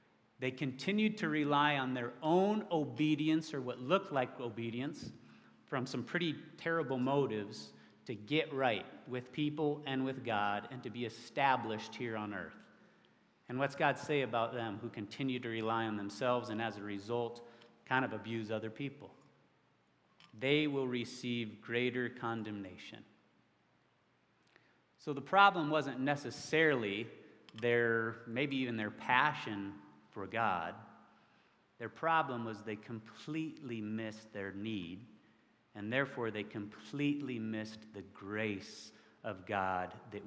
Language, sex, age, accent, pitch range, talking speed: English, male, 30-49, American, 105-140 Hz, 135 wpm